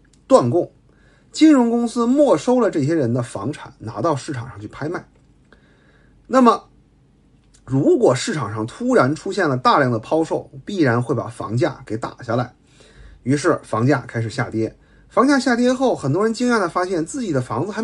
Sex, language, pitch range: male, Chinese, 110-160 Hz